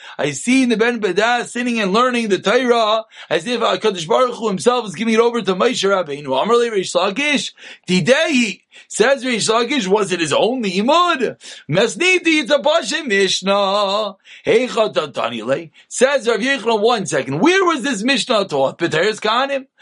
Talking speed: 135 wpm